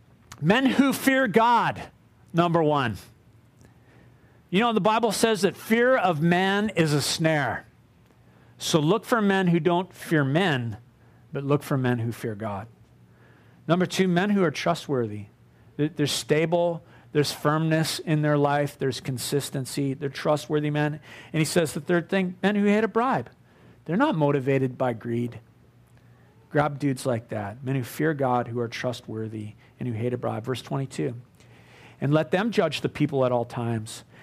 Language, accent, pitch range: English, American, 135-205 Hz